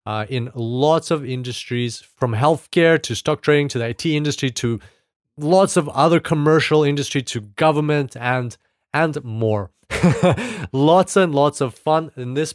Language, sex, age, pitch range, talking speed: English, male, 30-49, 125-160 Hz, 155 wpm